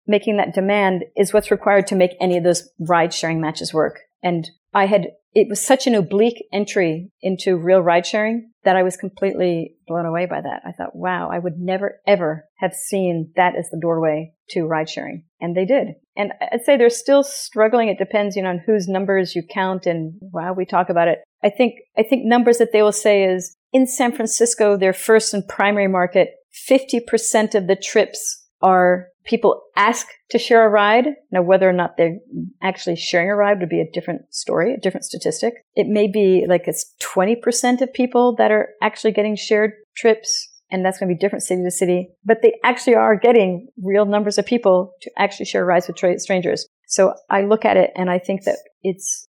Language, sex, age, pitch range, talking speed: English, female, 40-59, 180-220 Hz, 205 wpm